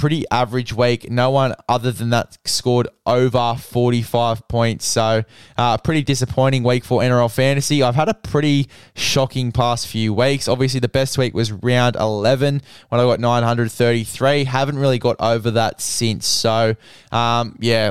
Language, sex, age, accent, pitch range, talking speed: English, male, 10-29, Australian, 120-135 Hz, 165 wpm